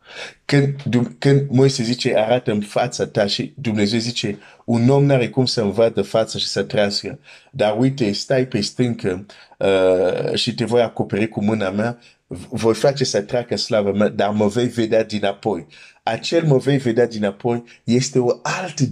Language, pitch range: Romanian, 105-130 Hz